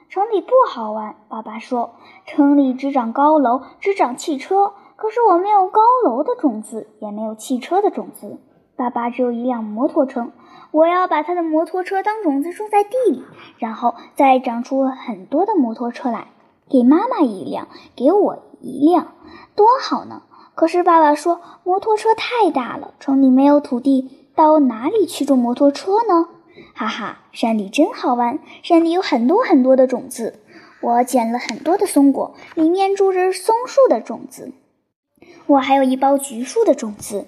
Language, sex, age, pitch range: Chinese, male, 10-29, 255-360 Hz